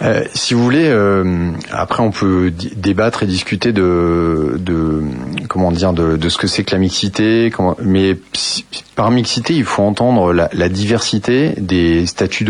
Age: 30-49